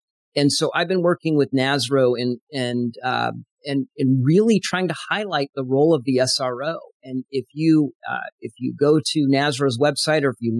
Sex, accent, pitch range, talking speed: male, American, 125-150 Hz, 190 wpm